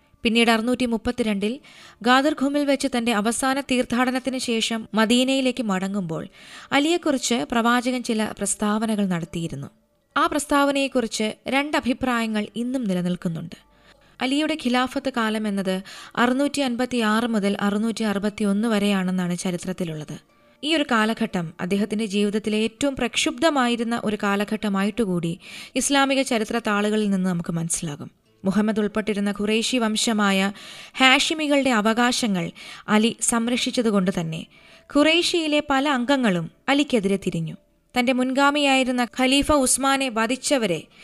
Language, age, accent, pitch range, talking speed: Malayalam, 20-39, native, 200-265 Hz, 90 wpm